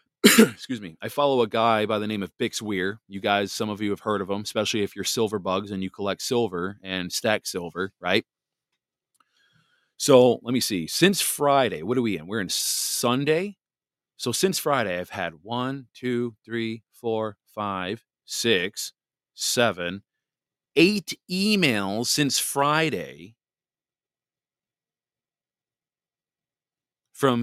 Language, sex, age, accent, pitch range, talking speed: English, male, 30-49, American, 105-140 Hz, 140 wpm